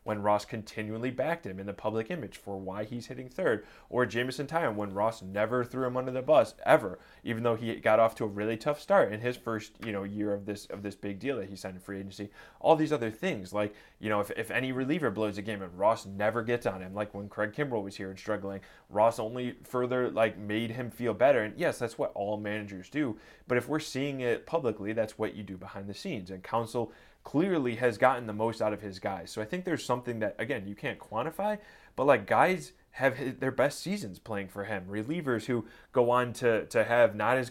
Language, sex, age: English, male, 20-39